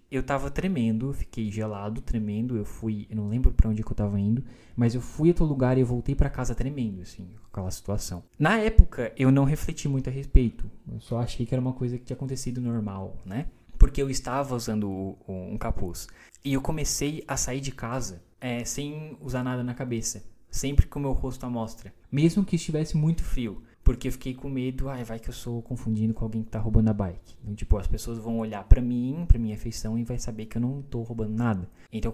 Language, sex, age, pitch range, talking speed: Portuguese, male, 20-39, 110-135 Hz, 230 wpm